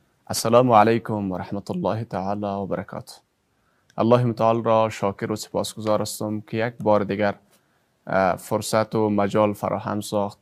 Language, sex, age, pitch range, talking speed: English, male, 30-49, 105-115 Hz, 140 wpm